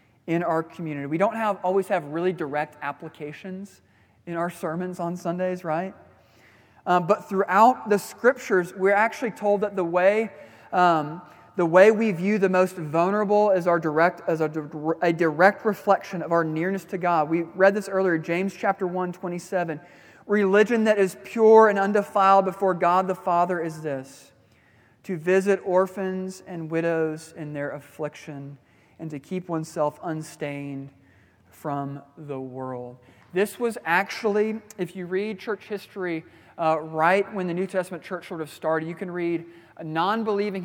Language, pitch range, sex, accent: English, 150-190 Hz, male, American